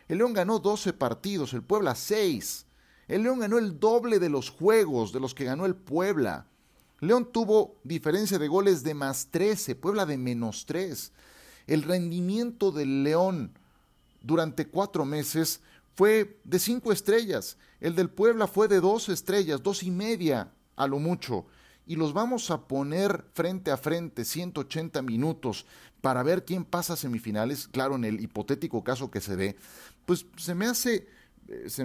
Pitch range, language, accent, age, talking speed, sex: 135-195 Hz, Spanish, Mexican, 40-59, 160 wpm, male